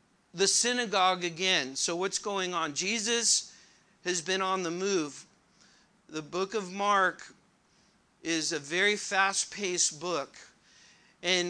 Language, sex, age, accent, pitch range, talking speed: English, male, 50-69, American, 180-205 Hz, 120 wpm